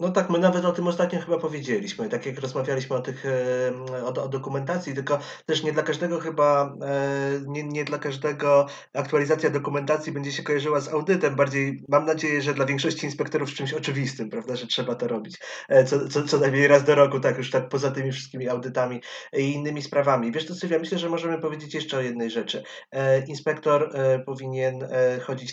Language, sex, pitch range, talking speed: Polish, male, 130-150 Hz, 190 wpm